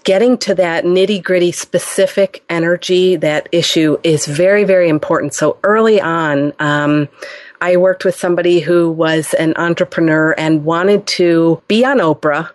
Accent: American